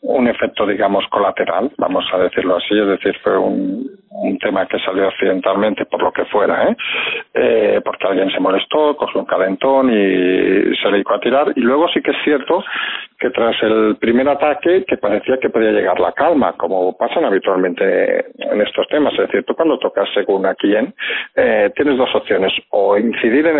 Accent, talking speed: Spanish, 185 wpm